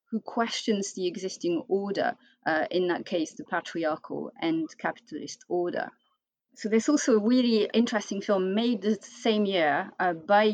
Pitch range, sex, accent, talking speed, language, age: 170-225 Hz, female, French, 155 wpm, English, 30-49